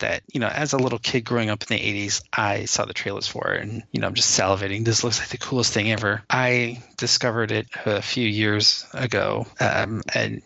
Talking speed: 230 wpm